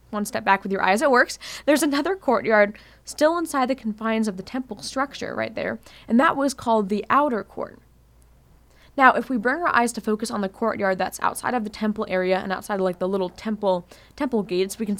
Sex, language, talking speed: female, English, 225 wpm